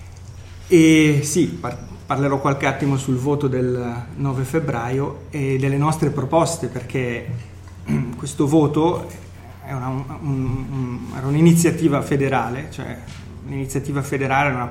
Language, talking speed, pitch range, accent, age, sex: Italian, 95 wpm, 120-145 Hz, native, 30-49, male